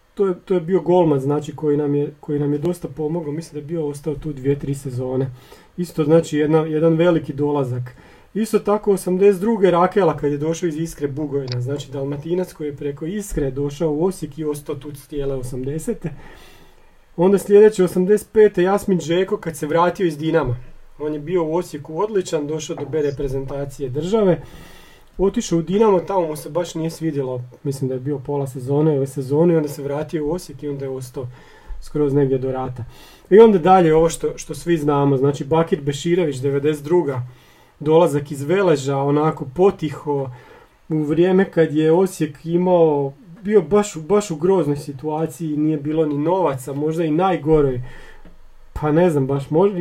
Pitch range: 145-175 Hz